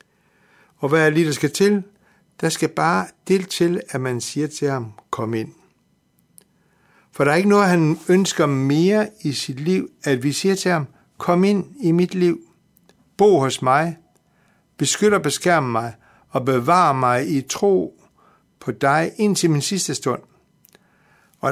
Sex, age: male, 60-79